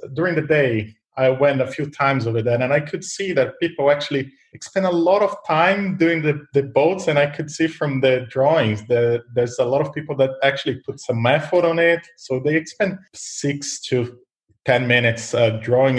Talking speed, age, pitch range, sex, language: 205 wpm, 20-39, 120-150 Hz, male, English